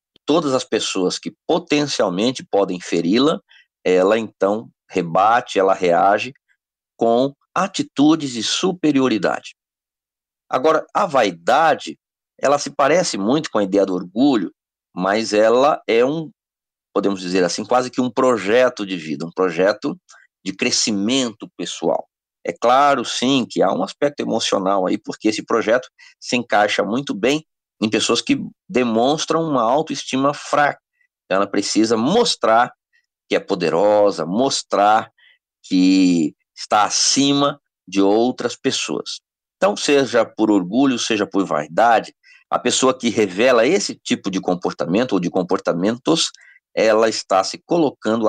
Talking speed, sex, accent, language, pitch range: 130 wpm, male, Brazilian, Portuguese, 100-140 Hz